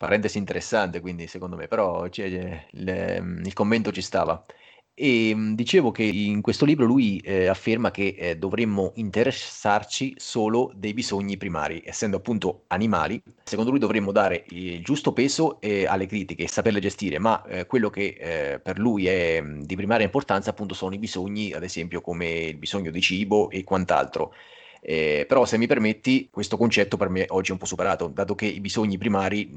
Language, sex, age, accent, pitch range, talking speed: Italian, male, 30-49, native, 90-110 Hz, 180 wpm